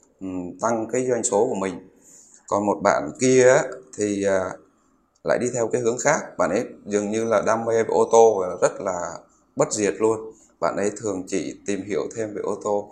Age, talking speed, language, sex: 20-39, 190 wpm, Vietnamese, male